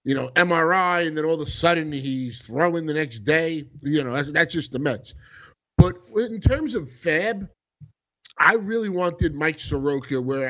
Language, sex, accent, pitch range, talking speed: English, male, American, 135-175 Hz, 185 wpm